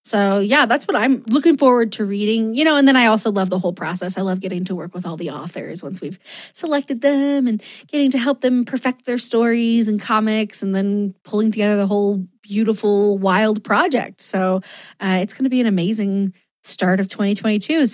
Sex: female